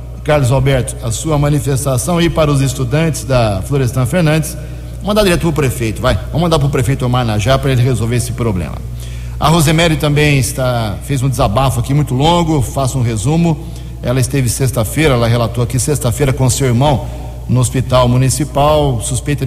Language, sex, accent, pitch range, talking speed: Portuguese, male, Brazilian, 120-150 Hz, 175 wpm